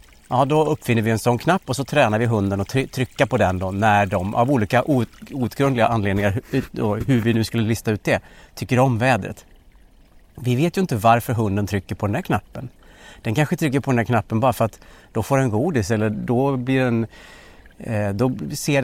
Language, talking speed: Swedish, 205 wpm